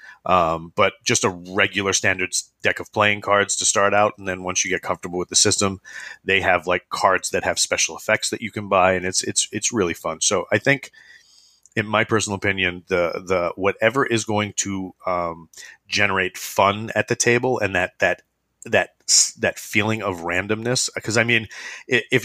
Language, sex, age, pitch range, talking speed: English, male, 30-49, 90-110 Hz, 190 wpm